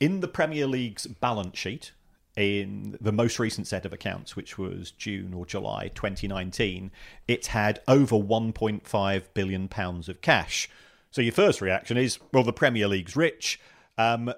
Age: 40-59